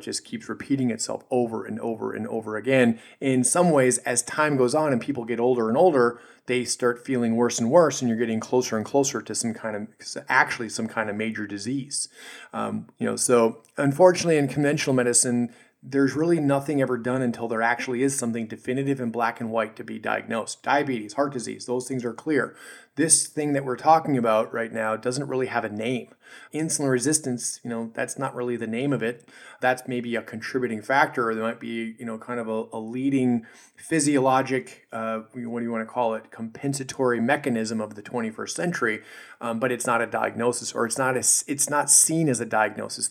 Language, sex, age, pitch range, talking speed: English, male, 30-49, 115-140 Hz, 205 wpm